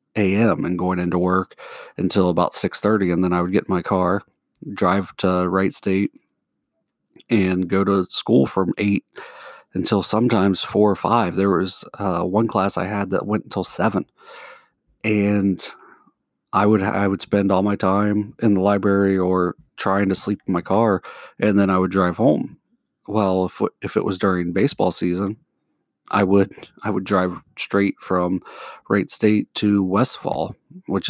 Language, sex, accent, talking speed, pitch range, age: English, male, American, 170 wpm, 95-105 Hz, 40-59